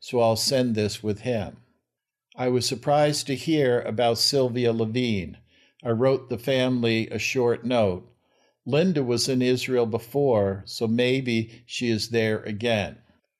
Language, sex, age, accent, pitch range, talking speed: English, male, 60-79, American, 115-130 Hz, 145 wpm